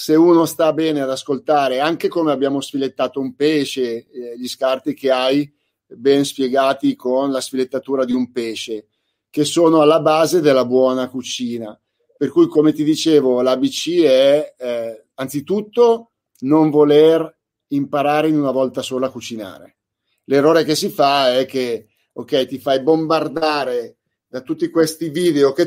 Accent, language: native, Italian